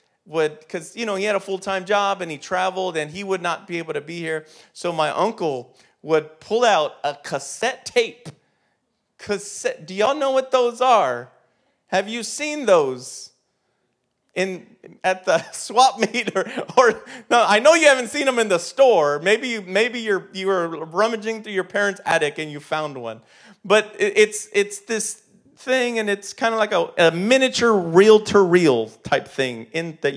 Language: English